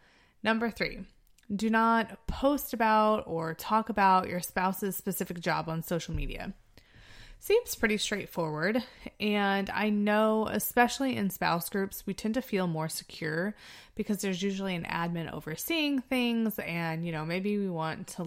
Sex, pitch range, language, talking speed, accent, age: female, 165-220 Hz, English, 150 wpm, American, 20-39